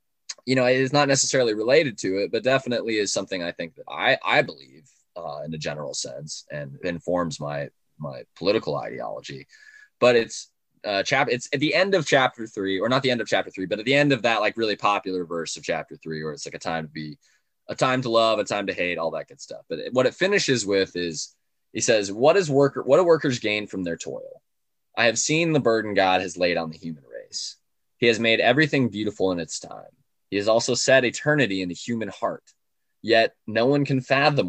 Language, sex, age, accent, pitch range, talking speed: English, male, 20-39, American, 95-135 Hz, 230 wpm